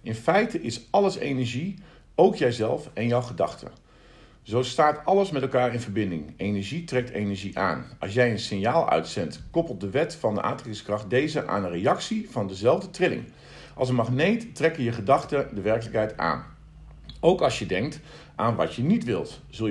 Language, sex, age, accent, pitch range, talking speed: Dutch, male, 50-69, Dutch, 105-150 Hz, 175 wpm